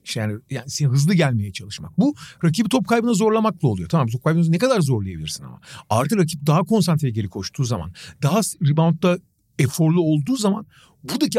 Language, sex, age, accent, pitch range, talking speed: Turkish, male, 50-69, native, 130-190 Hz, 170 wpm